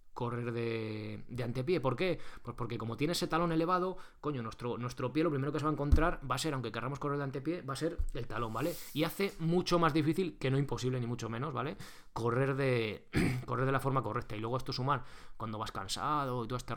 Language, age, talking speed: Spanish, 20-39, 240 wpm